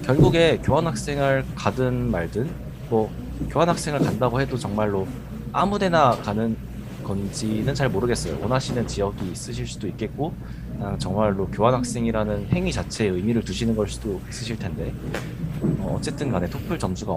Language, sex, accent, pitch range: Korean, male, native, 105-140 Hz